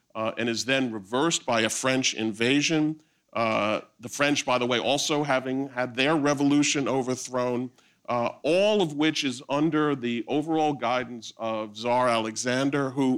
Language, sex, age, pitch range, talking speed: English, male, 50-69, 115-150 Hz, 155 wpm